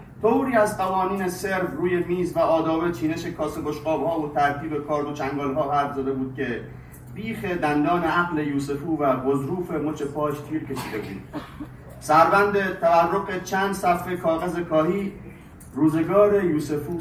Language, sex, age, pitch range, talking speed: Persian, male, 40-59, 145-180 Hz, 140 wpm